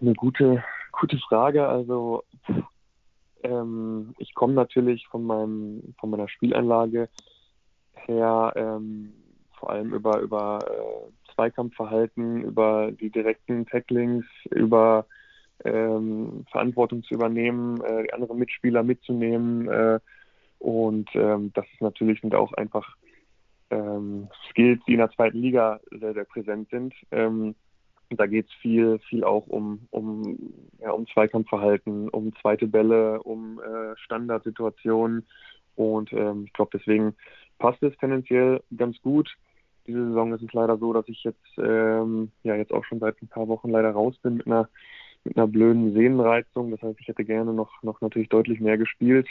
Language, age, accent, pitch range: German, 20-39, German, 110-120 Hz